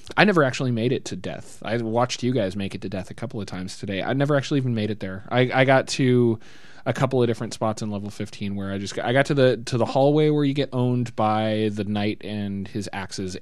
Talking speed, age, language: 270 wpm, 20-39, English